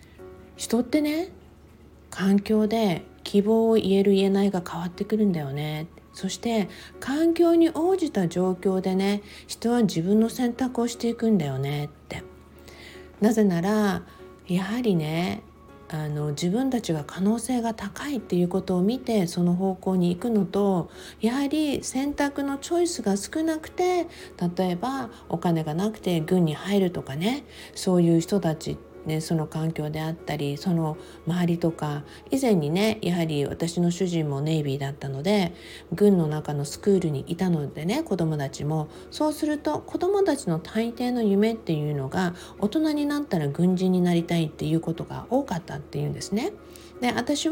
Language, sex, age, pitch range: Japanese, female, 50-69, 165-240 Hz